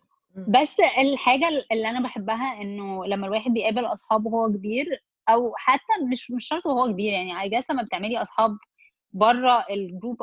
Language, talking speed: Arabic, 155 wpm